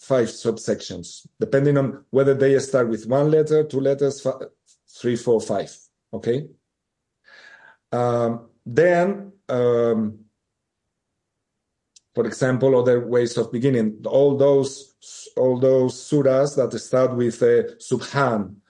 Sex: male